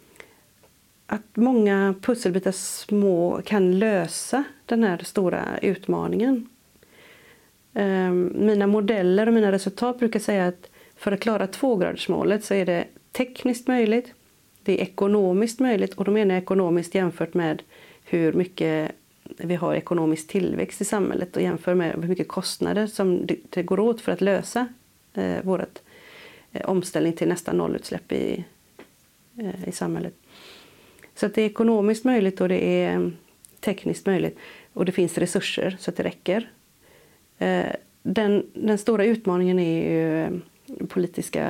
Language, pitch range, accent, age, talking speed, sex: Swedish, 180-225 Hz, native, 40-59, 135 wpm, female